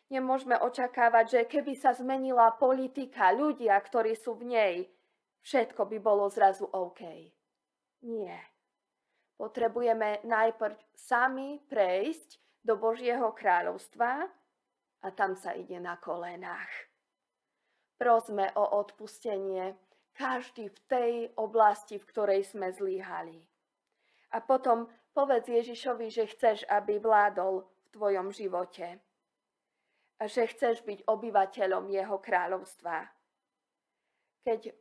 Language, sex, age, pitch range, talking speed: Slovak, female, 20-39, 195-235 Hz, 105 wpm